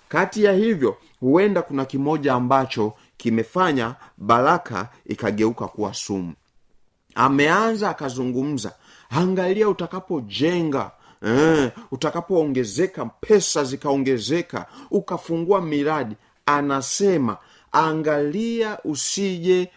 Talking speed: 75 wpm